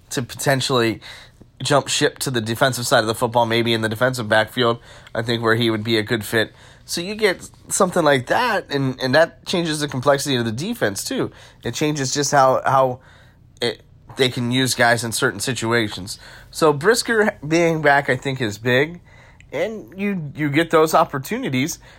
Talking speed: 185 wpm